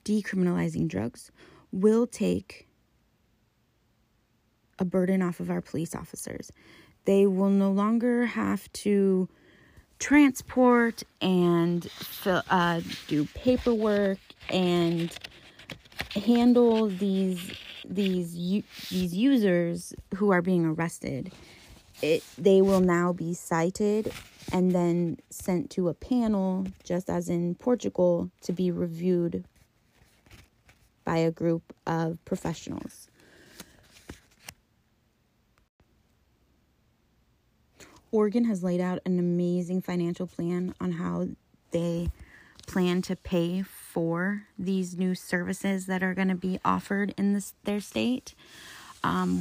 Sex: female